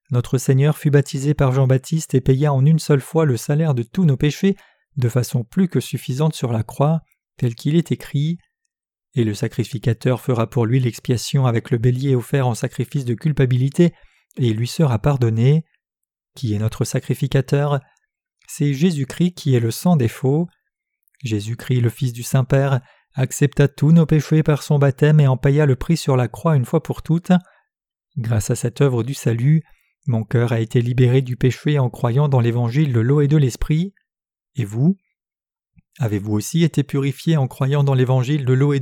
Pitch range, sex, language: 125-155 Hz, male, French